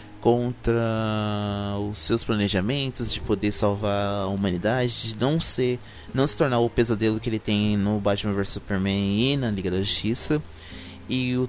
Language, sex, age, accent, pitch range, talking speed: Portuguese, male, 20-39, Brazilian, 100-130 Hz, 150 wpm